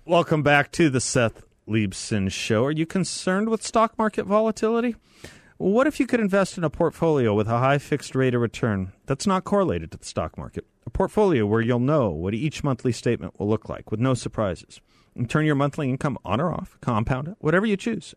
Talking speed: 210 wpm